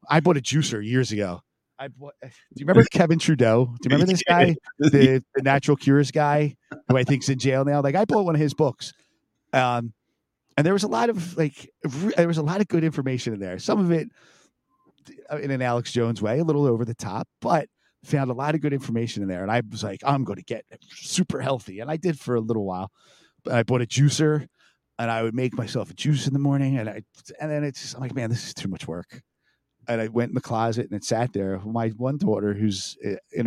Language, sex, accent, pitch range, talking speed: English, male, American, 115-150 Hz, 240 wpm